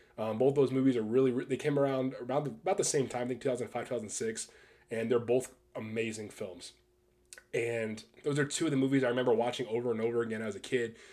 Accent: American